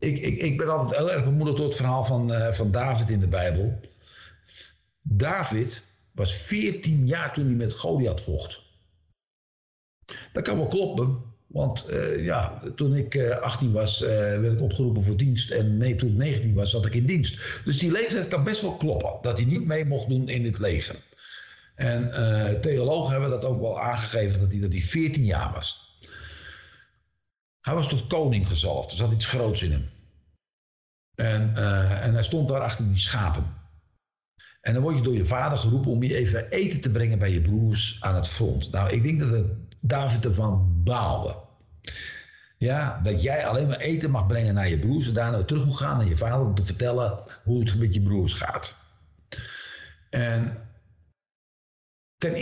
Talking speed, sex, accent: 185 wpm, male, Dutch